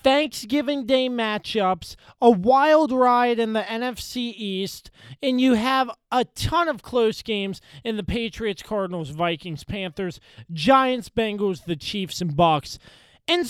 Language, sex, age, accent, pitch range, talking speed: English, male, 20-39, American, 155-215 Hz, 140 wpm